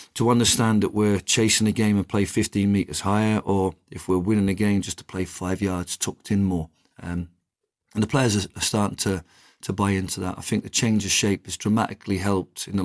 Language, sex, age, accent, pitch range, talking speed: English, male, 50-69, British, 95-105 Hz, 225 wpm